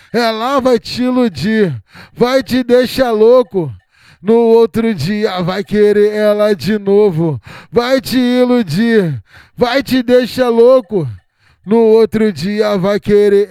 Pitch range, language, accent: 170-230 Hz, Portuguese, Brazilian